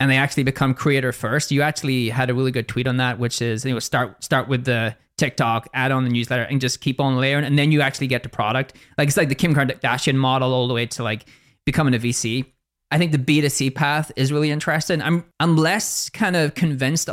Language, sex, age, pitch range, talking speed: English, male, 20-39, 125-150 Hz, 240 wpm